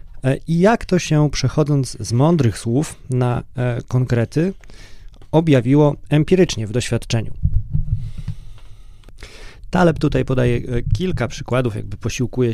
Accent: native